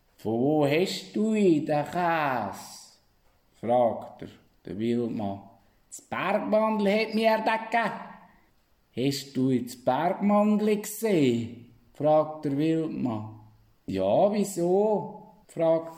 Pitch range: 115-175 Hz